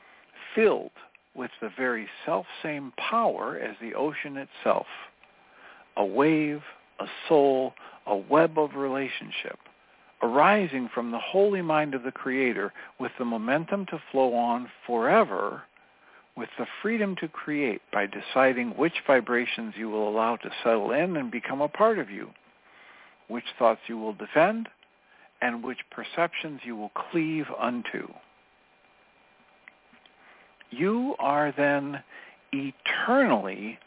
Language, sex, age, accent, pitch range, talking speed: English, male, 60-79, American, 115-160 Hz, 125 wpm